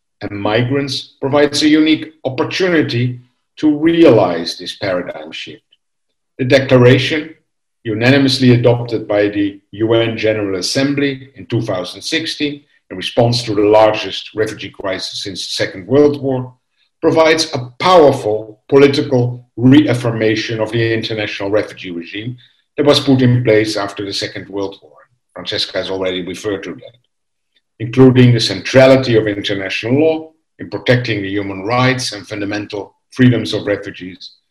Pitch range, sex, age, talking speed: 105-140 Hz, male, 60-79, 130 wpm